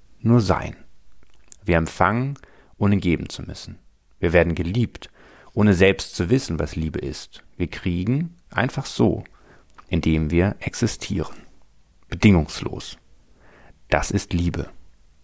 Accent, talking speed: German, 115 wpm